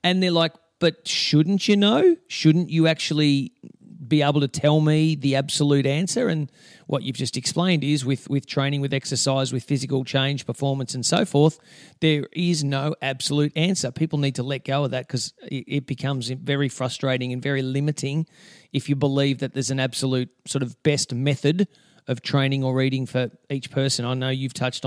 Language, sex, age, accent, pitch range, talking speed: English, male, 40-59, Australian, 135-160 Hz, 190 wpm